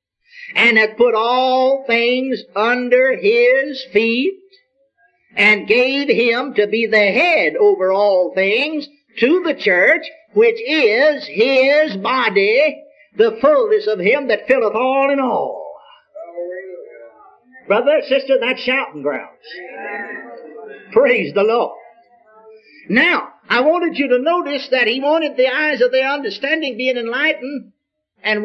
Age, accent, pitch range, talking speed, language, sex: 50-69, American, 235-345 Hz, 125 wpm, English, male